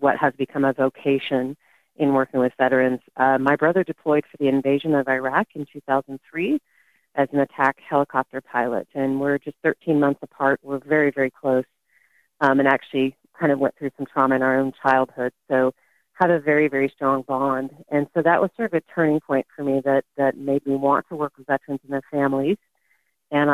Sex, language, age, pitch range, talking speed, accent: female, English, 40-59, 135-150 Hz, 200 wpm, American